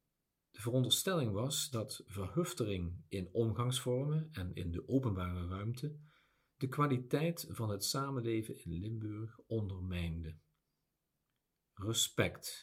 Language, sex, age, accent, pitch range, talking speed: Dutch, male, 50-69, Dutch, 90-135 Hz, 95 wpm